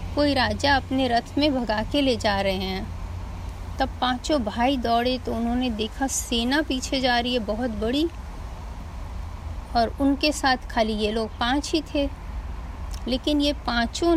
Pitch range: 210-285 Hz